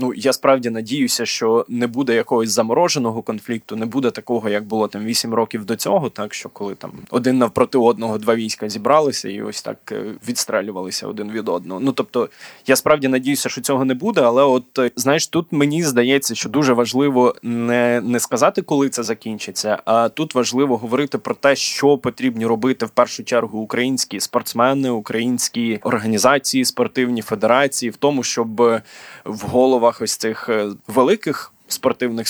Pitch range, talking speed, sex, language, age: 115-130 Hz, 165 wpm, male, Ukrainian, 20-39